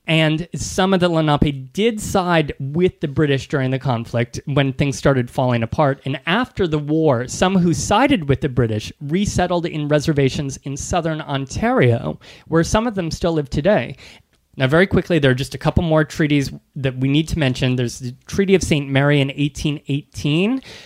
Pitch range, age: 135-175 Hz, 30-49